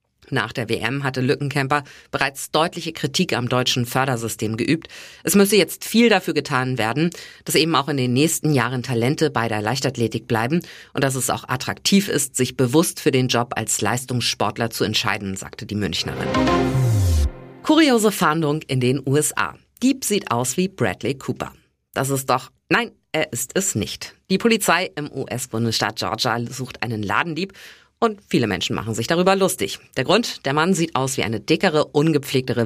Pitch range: 115-155 Hz